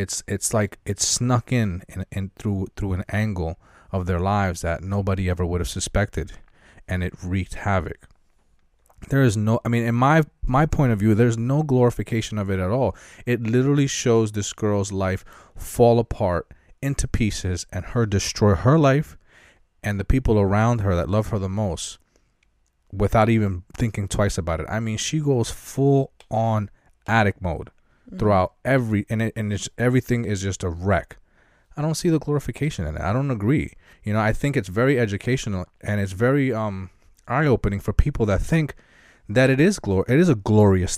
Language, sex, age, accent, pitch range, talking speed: English, male, 30-49, American, 95-125 Hz, 185 wpm